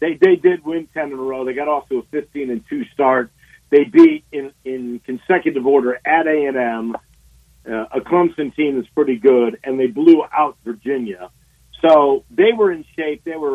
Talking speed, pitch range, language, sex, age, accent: 195 wpm, 130-175 Hz, English, male, 50-69, American